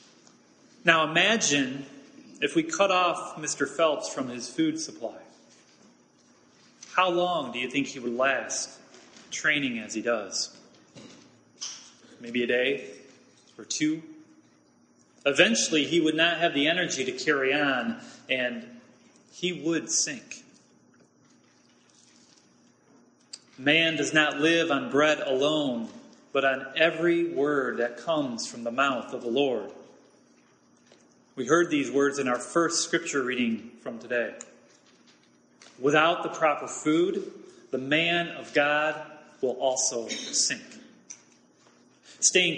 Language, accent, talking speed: English, American, 120 wpm